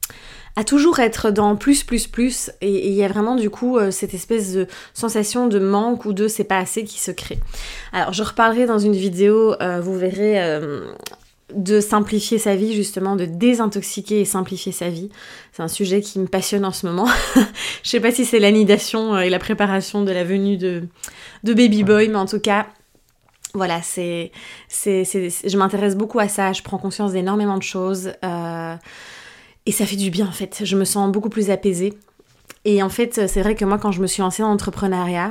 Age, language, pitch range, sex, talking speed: 20-39, French, 185-215 Hz, female, 210 wpm